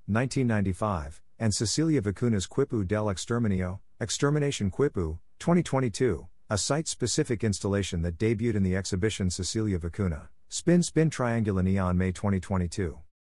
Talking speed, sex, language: 110 wpm, male, English